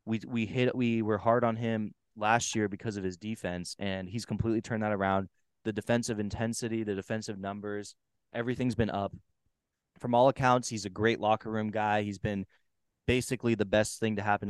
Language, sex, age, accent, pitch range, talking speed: English, male, 20-39, American, 95-110 Hz, 190 wpm